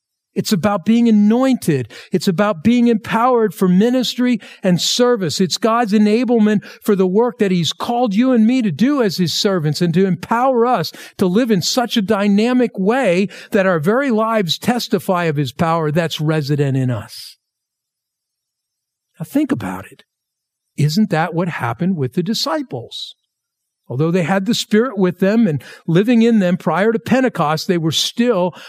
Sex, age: male, 50-69